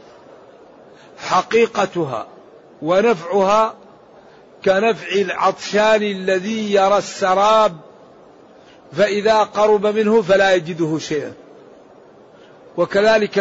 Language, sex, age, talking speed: Arabic, male, 50-69, 65 wpm